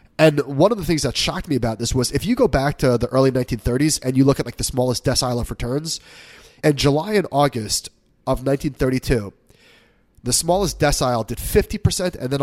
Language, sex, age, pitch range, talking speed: English, male, 30-49, 125-155 Hz, 210 wpm